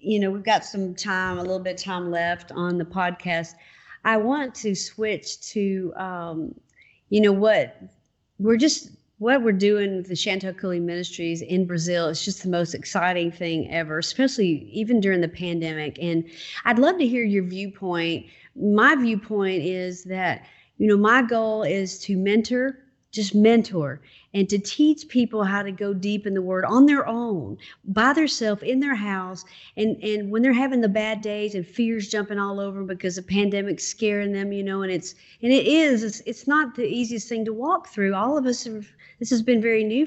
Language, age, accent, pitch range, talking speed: English, 50-69, American, 185-230 Hz, 195 wpm